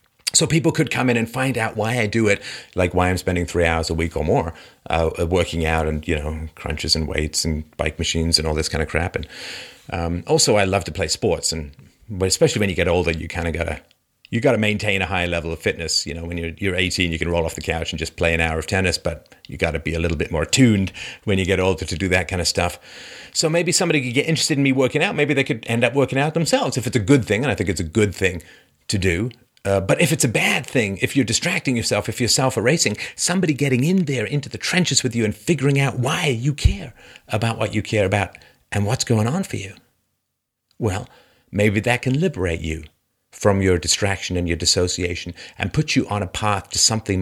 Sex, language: male, English